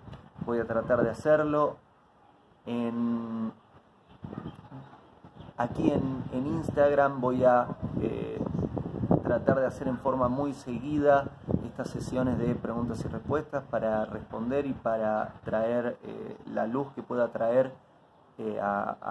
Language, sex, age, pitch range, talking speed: Spanish, male, 30-49, 110-135 Hz, 115 wpm